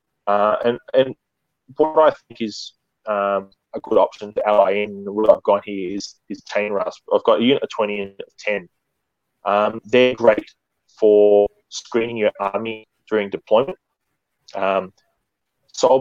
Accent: Australian